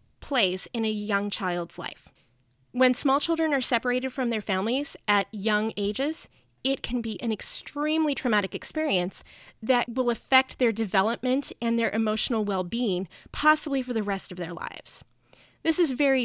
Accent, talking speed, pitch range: American, 160 wpm, 195-260 Hz